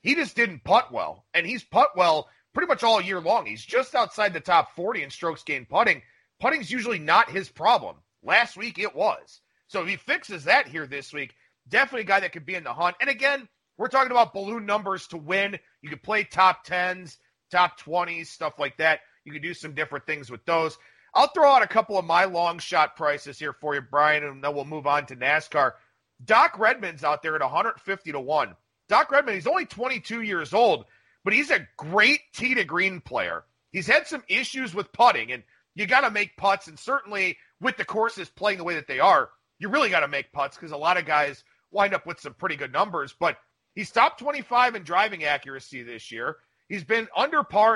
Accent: American